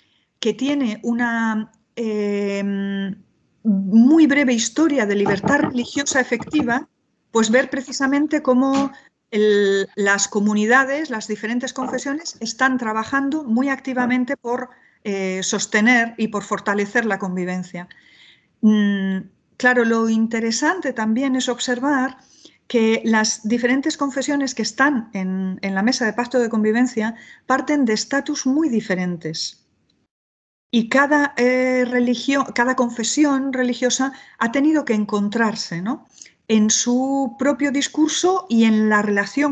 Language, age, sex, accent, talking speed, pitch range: English, 40-59, female, Spanish, 120 wpm, 210-270 Hz